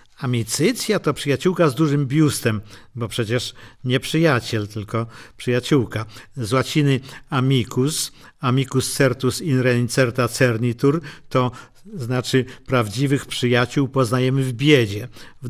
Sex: male